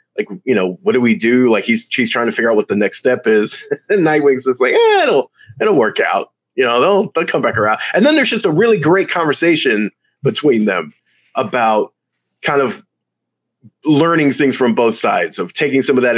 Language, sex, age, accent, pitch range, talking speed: English, male, 30-49, American, 110-180 Hz, 215 wpm